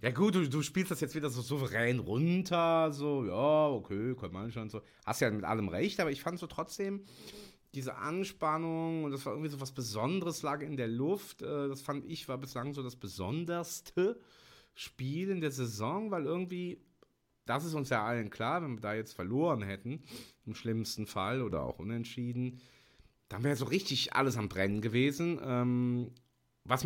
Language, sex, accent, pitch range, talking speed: German, male, German, 115-150 Hz, 185 wpm